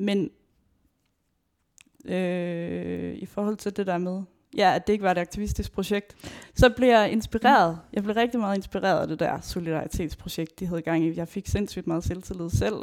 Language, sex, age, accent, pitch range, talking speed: Danish, female, 20-39, native, 170-210 Hz, 185 wpm